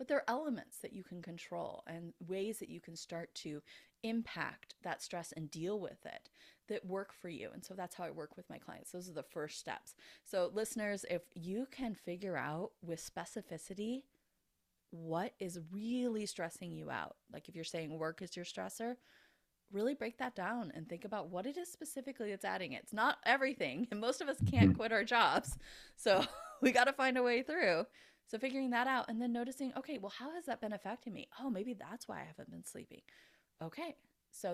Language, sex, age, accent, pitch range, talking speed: English, female, 20-39, American, 175-240 Hz, 210 wpm